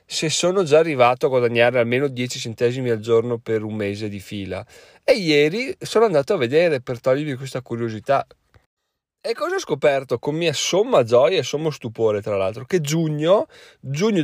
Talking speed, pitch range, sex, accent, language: 175 wpm, 120-155 Hz, male, native, Italian